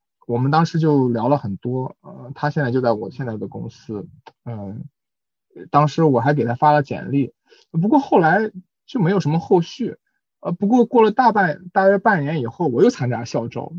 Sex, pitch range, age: male, 120-155 Hz, 20-39